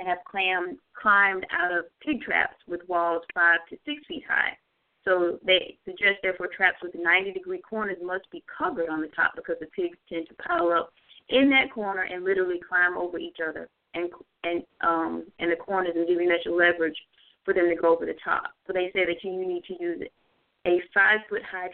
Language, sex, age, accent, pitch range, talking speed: English, female, 30-49, American, 180-270 Hz, 205 wpm